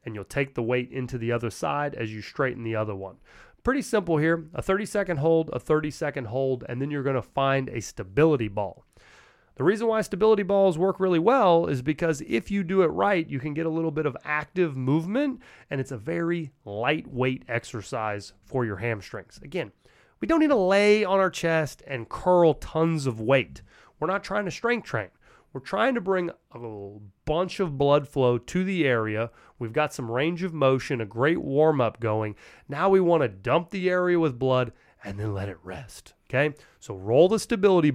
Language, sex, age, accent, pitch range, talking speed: English, male, 30-49, American, 120-170 Hz, 200 wpm